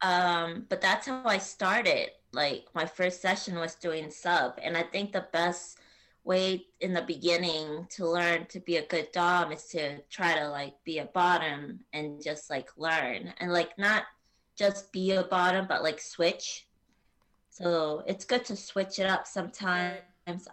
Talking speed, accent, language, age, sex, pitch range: 170 wpm, American, English, 20-39, female, 165-190 Hz